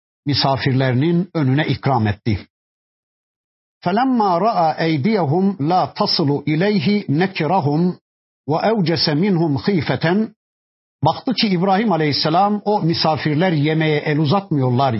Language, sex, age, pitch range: Turkish, male, 50-69, 145-190 Hz